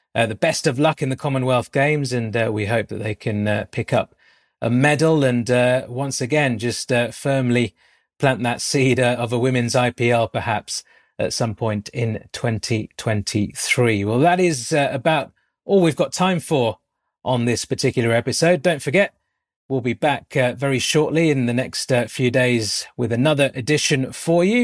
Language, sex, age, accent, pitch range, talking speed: English, male, 30-49, British, 115-150 Hz, 185 wpm